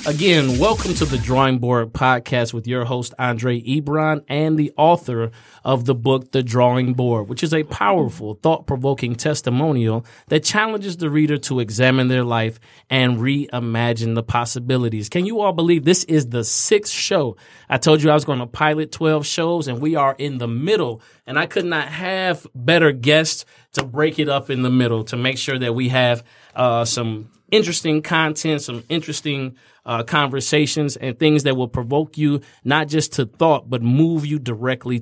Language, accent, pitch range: English, American, 125-155 Hz